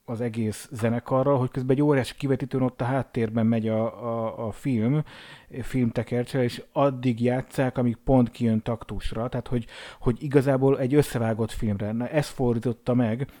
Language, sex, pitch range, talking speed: Hungarian, male, 115-135 Hz, 155 wpm